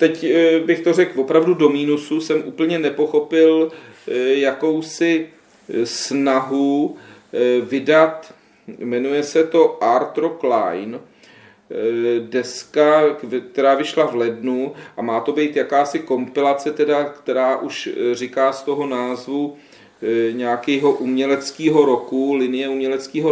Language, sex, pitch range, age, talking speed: Czech, male, 120-150 Hz, 40-59, 105 wpm